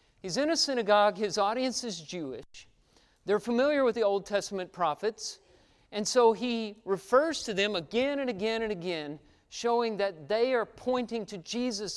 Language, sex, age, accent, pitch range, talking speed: English, male, 40-59, American, 190-240 Hz, 165 wpm